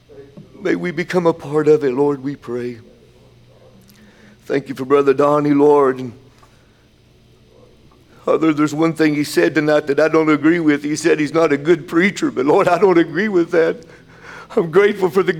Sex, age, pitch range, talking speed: male, 60-79, 120-180 Hz, 185 wpm